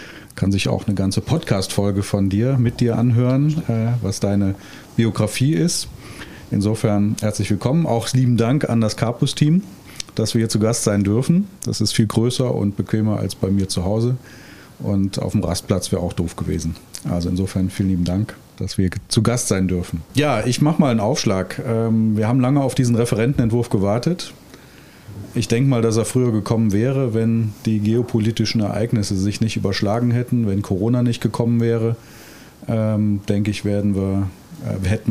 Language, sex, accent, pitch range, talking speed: German, male, German, 100-120 Hz, 170 wpm